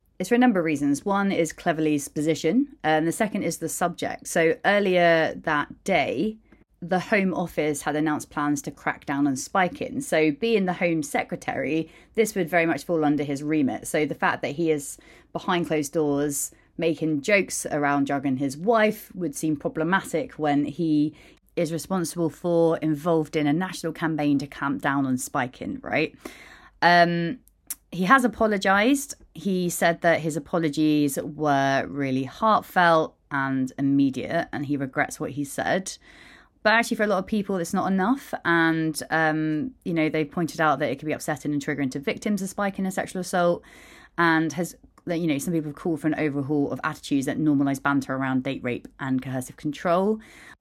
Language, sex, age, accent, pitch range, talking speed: English, female, 30-49, British, 145-180 Hz, 180 wpm